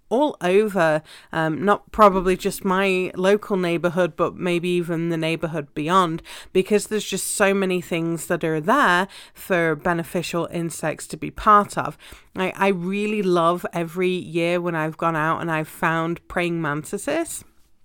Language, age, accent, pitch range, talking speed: English, 30-49, British, 165-195 Hz, 155 wpm